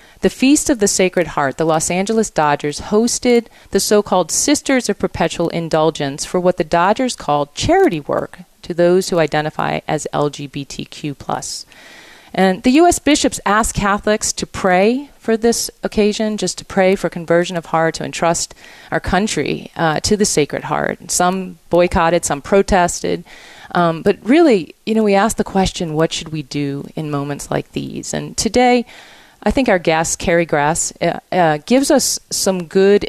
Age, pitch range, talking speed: 40-59, 155-200 Hz, 165 wpm